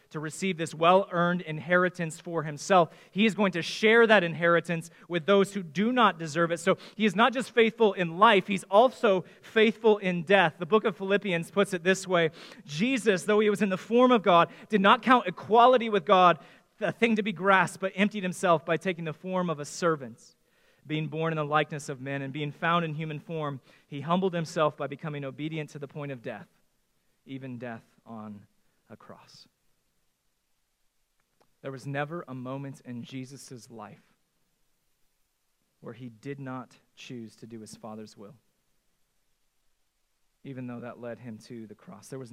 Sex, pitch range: male, 135-185 Hz